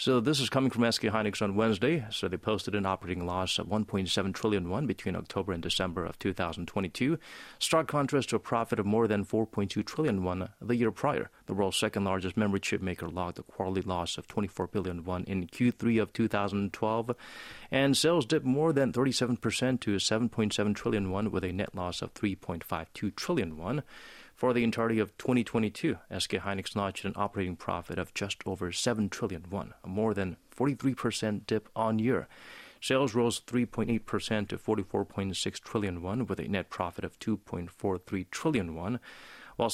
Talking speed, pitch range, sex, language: 170 wpm, 95-115 Hz, male, English